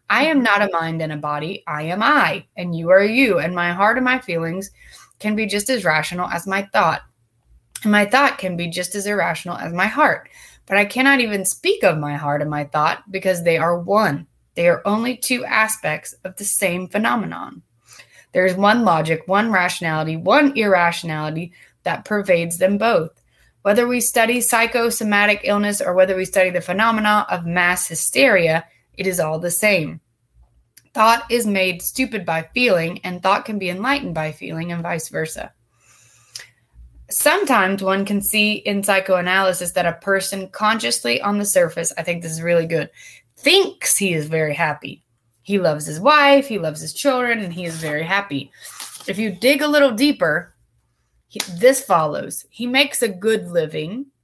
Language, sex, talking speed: English, female, 175 wpm